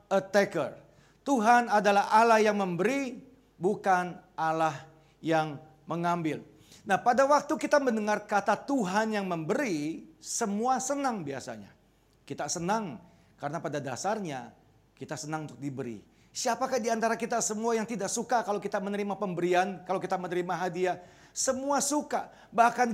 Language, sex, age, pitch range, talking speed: Indonesian, male, 40-59, 180-230 Hz, 130 wpm